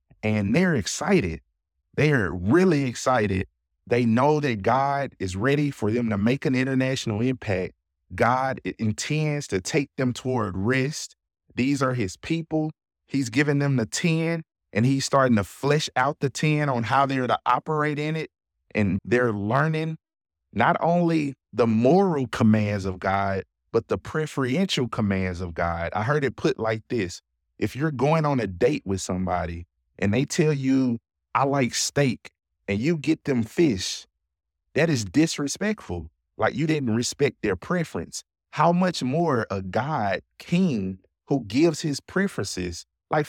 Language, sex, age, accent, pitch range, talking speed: English, male, 30-49, American, 100-145 Hz, 155 wpm